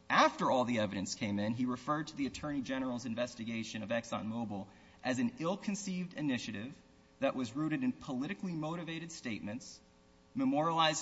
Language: English